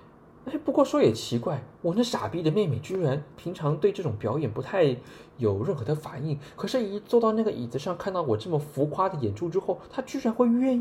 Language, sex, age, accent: Chinese, male, 20-39, native